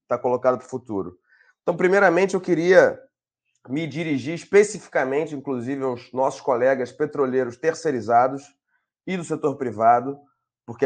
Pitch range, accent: 130-160 Hz, Brazilian